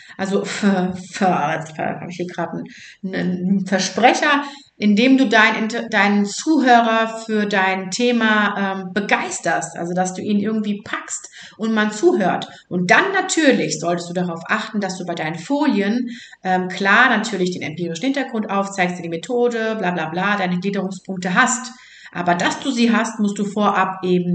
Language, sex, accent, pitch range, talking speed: German, female, German, 185-245 Hz, 155 wpm